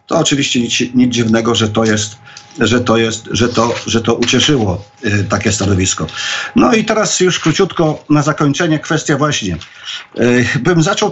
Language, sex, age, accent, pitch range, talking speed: Polish, male, 50-69, native, 120-155 Hz, 155 wpm